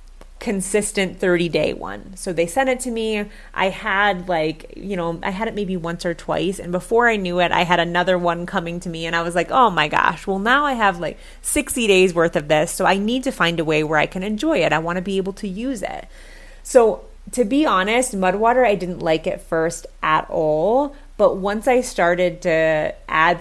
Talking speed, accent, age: 230 wpm, American, 30-49